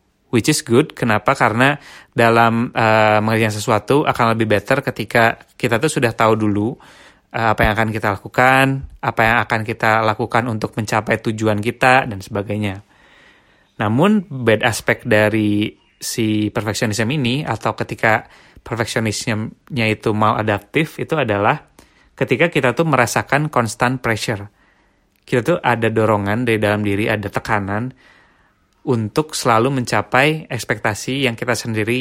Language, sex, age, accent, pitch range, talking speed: Indonesian, male, 20-39, native, 110-125 Hz, 135 wpm